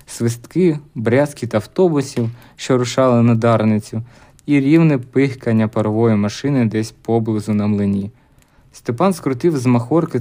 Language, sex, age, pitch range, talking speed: Ukrainian, male, 20-39, 115-140 Hz, 125 wpm